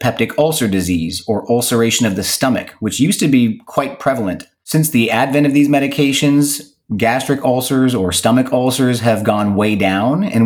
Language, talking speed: English, 170 wpm